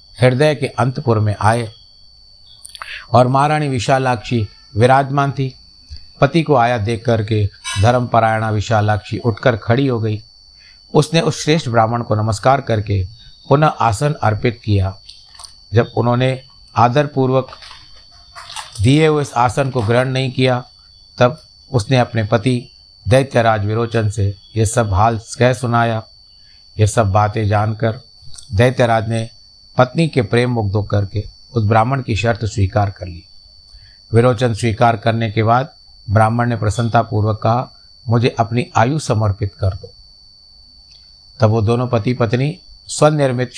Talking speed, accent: 130 wpm, native